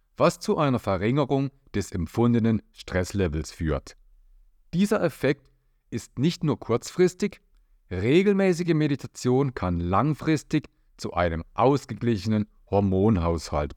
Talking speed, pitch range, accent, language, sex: 95 wpm, 95-135 Hz, German, German, male